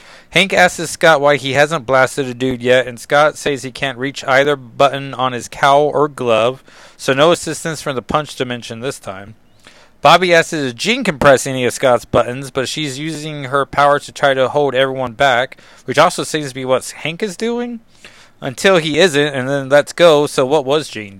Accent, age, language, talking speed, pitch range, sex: American, 30-49, English, 205 wpm, 115-145 Hz, male